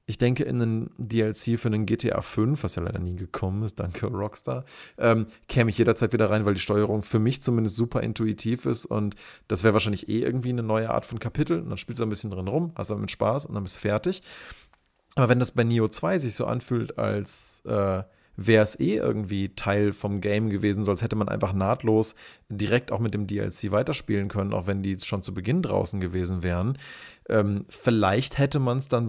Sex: male